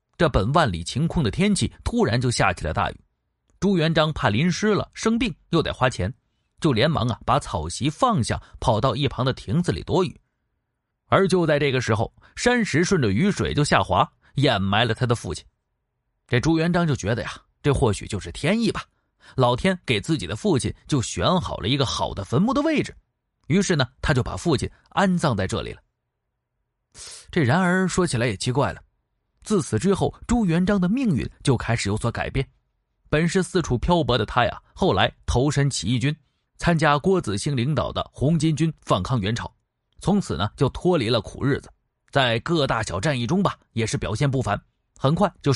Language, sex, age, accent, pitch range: Chinese, male, 30-49, native, 115-175 Hz